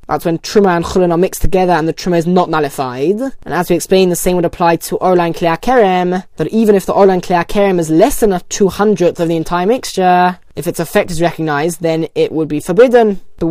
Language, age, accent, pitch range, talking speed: English, 10-29, British, 175-215 Hz, 240 wpm